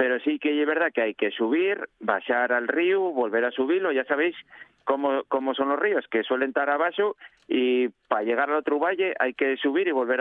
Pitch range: 120-150 Hz